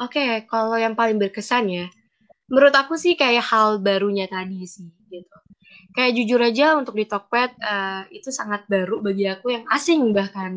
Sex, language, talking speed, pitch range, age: female, Indonesian, 165 wpm, 195-240 Hz, 20-39